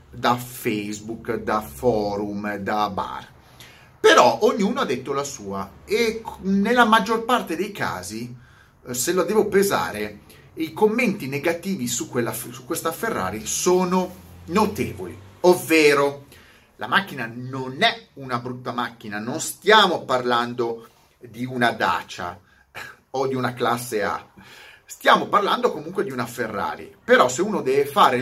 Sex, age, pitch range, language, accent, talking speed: male, 30-49, 115-180 Hz, Italian, native, 130 wpm